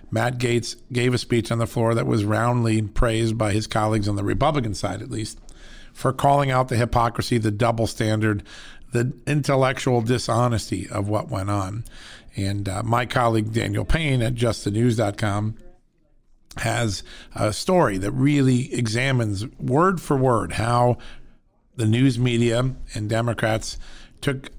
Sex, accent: male, American